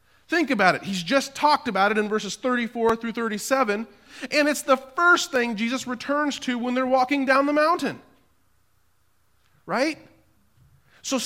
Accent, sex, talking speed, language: American, male, 155 wpm, English